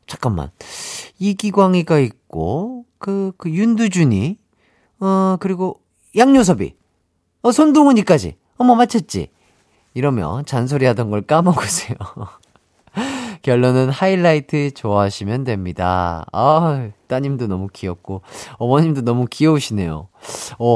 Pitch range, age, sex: 110-170 Hz, 40-59, male